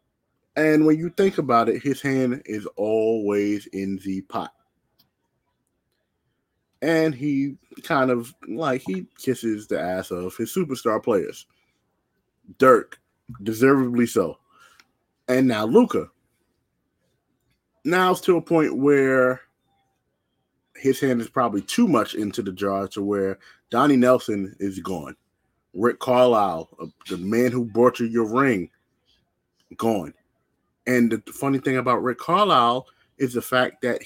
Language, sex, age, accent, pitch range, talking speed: English, male, 20-39, American, 115-165 Hz, 130 wpm